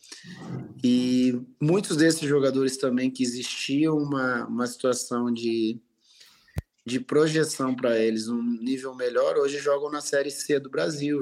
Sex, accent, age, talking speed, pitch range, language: male, Brazilian, 20-39, 135 wpm, 115-145 Hz, Portuguese